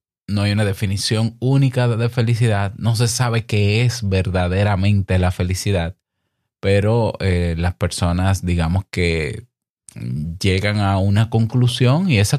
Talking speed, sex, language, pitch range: 130 wpm, male, Spanish, 95-125 Hz